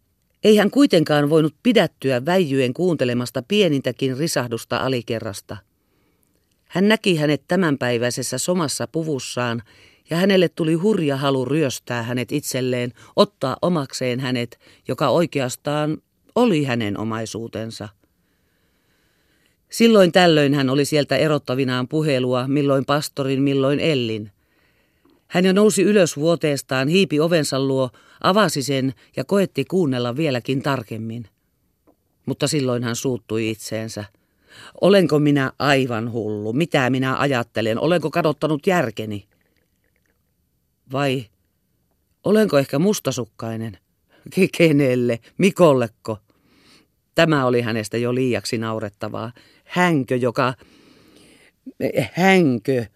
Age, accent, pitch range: 40-59, native, 115-155 Hz